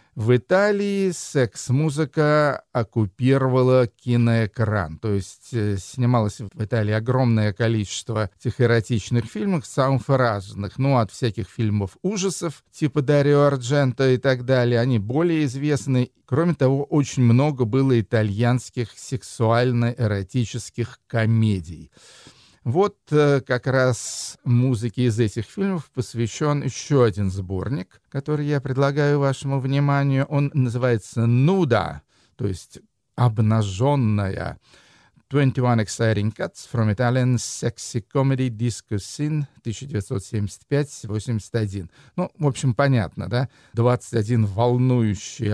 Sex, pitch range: male, 110-140 Hz